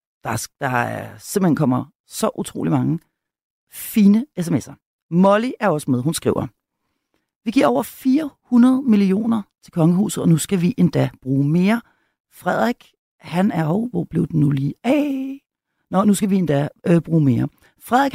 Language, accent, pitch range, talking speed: Danish, native, 140-215 Hz, 160 wpm